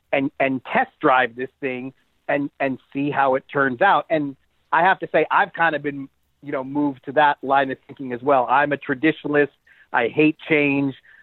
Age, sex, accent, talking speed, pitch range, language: 40-59, male, American, 205 wpm, 130-155 Hz, English